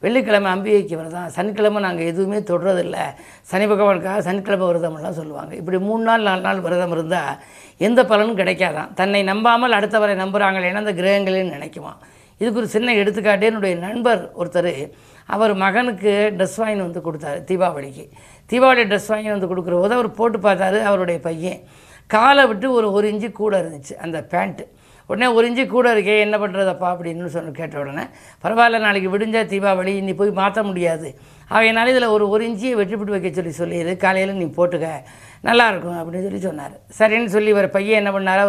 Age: 20-39